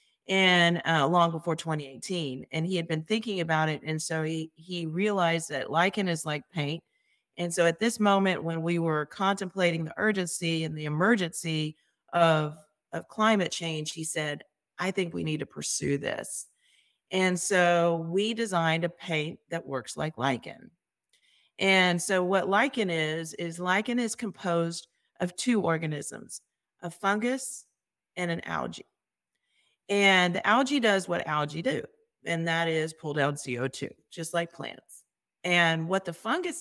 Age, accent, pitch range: 40-59, American, 155-190 Hz